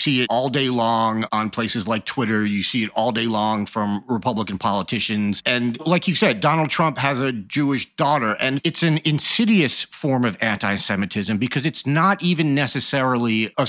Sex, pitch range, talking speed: male, 110-145 Hz, 180 wpm